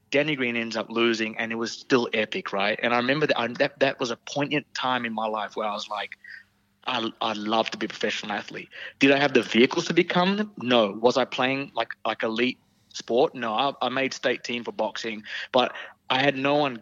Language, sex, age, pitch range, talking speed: English, male, 20-39, 105-120 Hz, 235 wpm